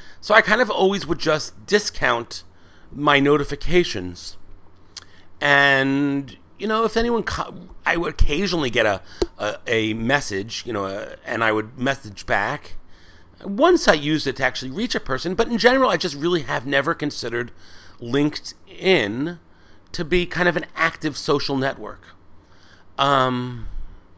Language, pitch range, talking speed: English, 100-165 Hz, 145 wpm